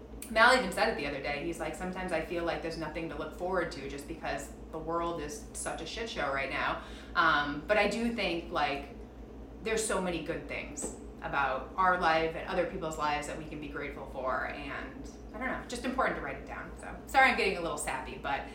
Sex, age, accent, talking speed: female, 30-49, American, 235 wpm